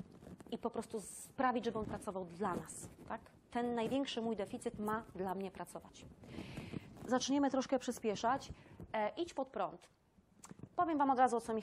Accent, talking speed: native, 165 wpm